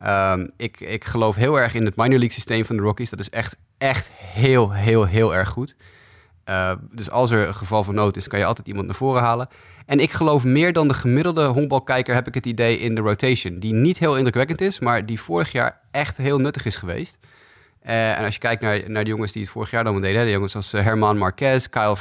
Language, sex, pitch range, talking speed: Dutch, male, 100-130 Hz, 250 wpm